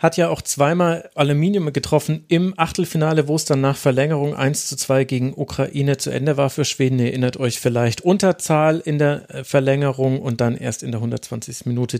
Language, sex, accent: German, male, German